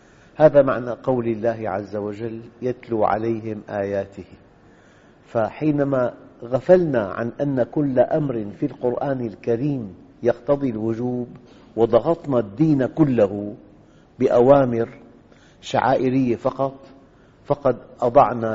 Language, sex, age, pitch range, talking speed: Arabic, male, 50-69, 110-140 Hz, 90 wpm